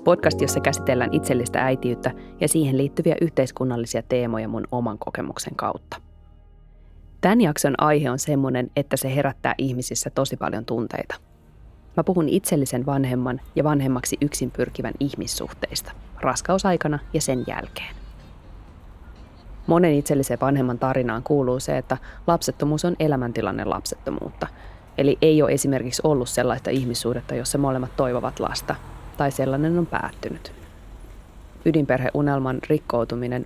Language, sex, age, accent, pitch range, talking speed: Finnish, female, 20-39, native, 120-150 Hz, 120 wpm